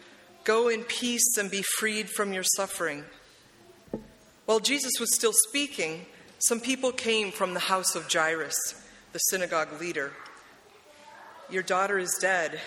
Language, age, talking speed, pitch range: English, 30-49, 135 wpm, 180-230 Hz